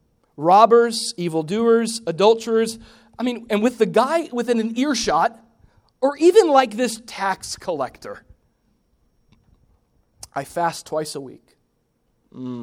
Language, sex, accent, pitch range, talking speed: English, male, American, 125-190 Hz, 115 wpm